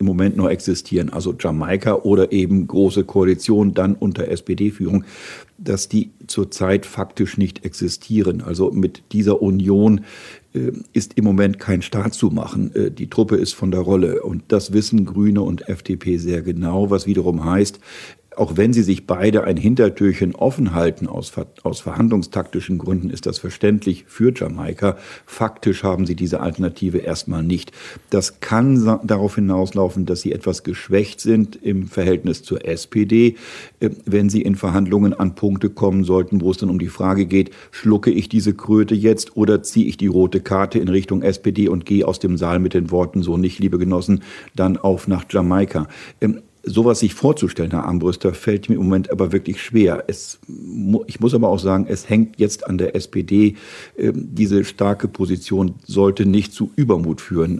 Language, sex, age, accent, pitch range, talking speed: German, male, 50-69, German, 95-105 Hz, 170 wpm